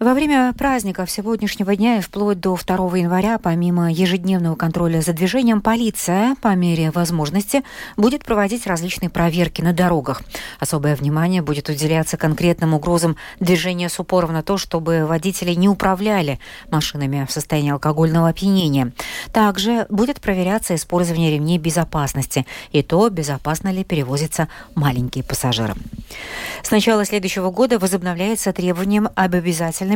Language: Russian